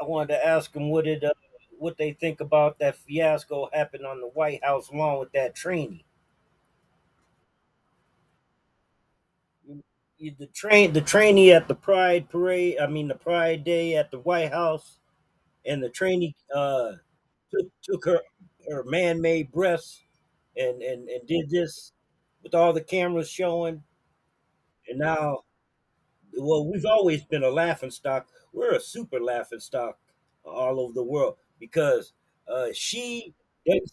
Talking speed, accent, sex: 145 wpm, American, male